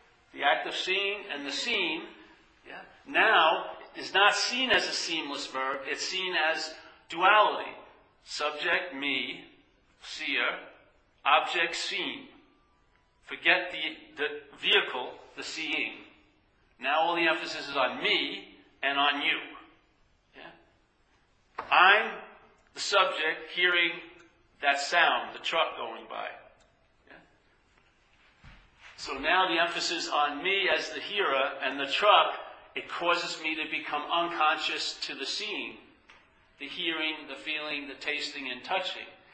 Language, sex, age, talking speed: English, male, 50-69, 125 wpm